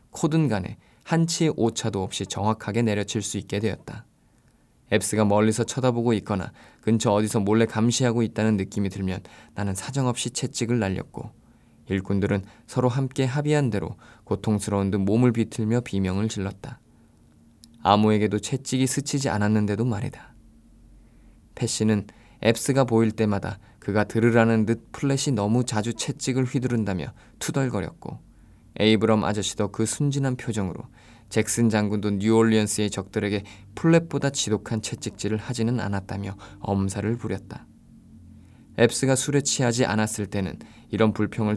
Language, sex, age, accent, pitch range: Korean, male, 20-39, native, 105-120 Hz